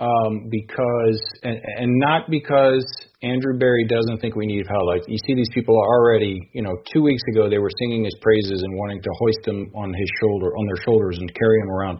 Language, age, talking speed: English, 40-59, 215 wpm